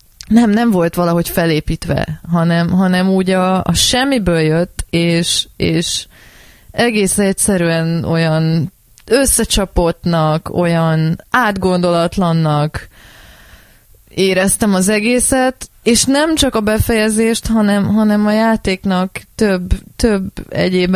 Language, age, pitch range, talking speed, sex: Hungarian, 20-39, 170-205 Hz, 100 wpm, female